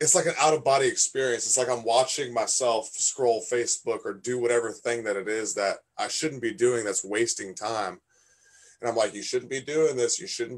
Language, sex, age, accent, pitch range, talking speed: English, male, 20-39, American, 105-140 Hz, 210 wpm